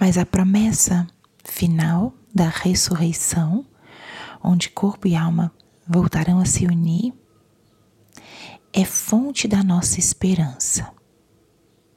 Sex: female